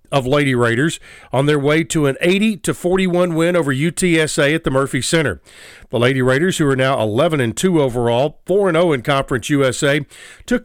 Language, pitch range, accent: English, 130-165 Hz, American